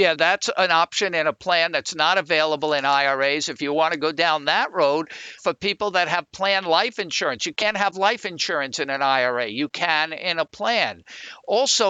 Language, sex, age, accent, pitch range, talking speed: English, male, 50-69, American, 150-195 Hz, 205 wpm